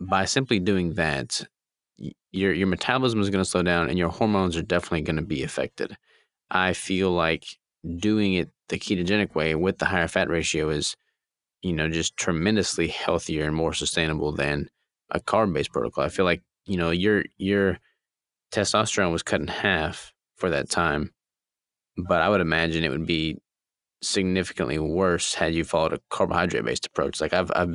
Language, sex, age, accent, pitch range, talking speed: English, male, 20-39, American, 80-100 Hz, 175 wpm